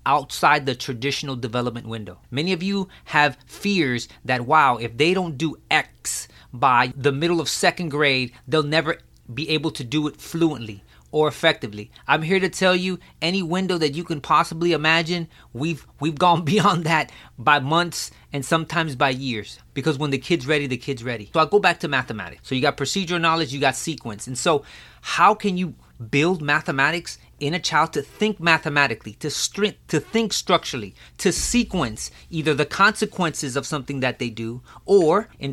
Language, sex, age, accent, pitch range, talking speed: English, male, 30-49, American, 130-175 Hz, 180 wpm